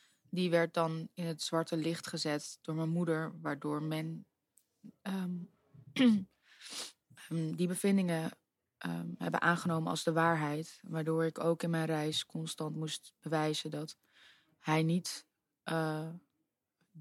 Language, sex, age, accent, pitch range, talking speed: Dutch, female, 20-39, Dutch, 155-170 Hz, 125 wpm